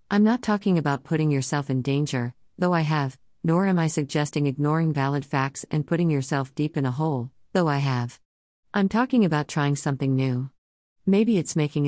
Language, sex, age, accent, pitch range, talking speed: English, female, 50-69, American, 130-170 Hz, 185 wpm